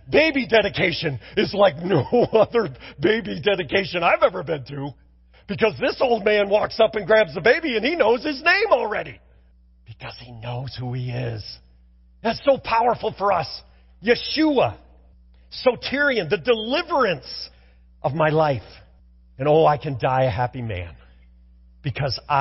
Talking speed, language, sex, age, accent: 145 wpm, English, male, 40-59, American